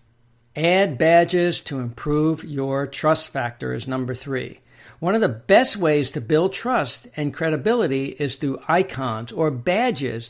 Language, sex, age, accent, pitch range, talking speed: English, male, 60-79, American, 125-170 Hz, 145 wpm